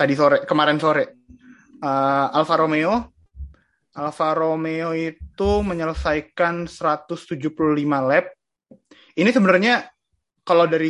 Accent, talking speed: native, 95 wpm